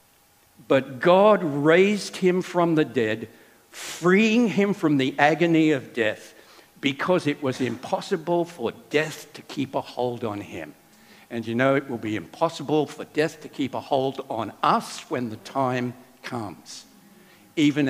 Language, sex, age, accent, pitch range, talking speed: English, male, 60-79, American, 130-175 Hz, 155 wpm